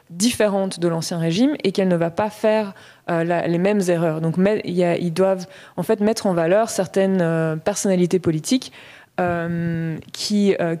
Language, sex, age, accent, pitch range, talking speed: French, female, 20-39, French, 165-205 Hz, 165 wpm